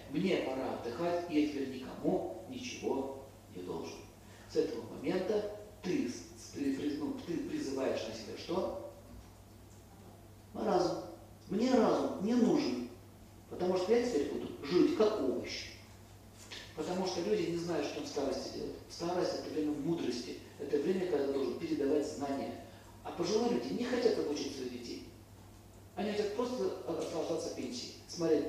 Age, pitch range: 40-59, 110-180 Hz